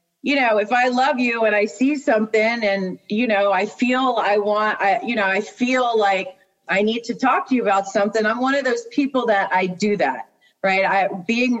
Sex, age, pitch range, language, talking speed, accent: female, 30-49, 195-235 Hz, English, 220 wpm, American